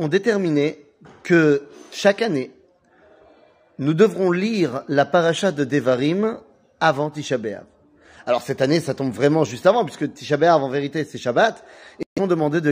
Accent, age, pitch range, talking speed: French, 30-49, 140-190 Hz, 155 wpm